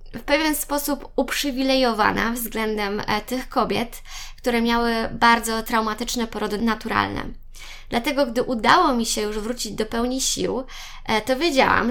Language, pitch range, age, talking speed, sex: Polish, 220-255 Hz, 20-39, 125 wpm, female